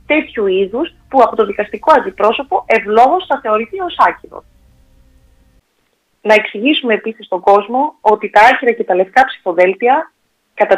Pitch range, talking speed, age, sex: 185-260 Hz, 140 wpm, 30-49, female